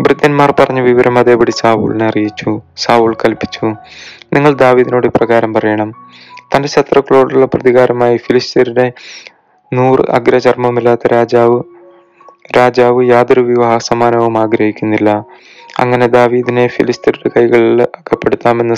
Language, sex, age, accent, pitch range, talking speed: Malayalam, male, 20-39, native, 115-130 Hz, 95 wpm